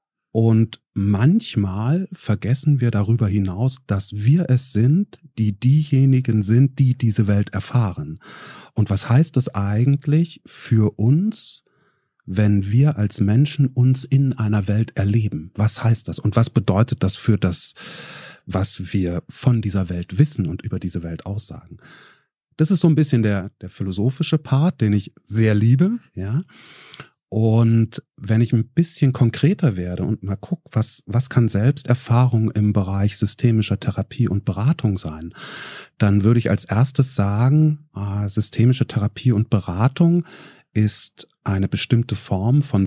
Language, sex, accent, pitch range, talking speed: German, male, German, 100-135 Hz, 145 wpm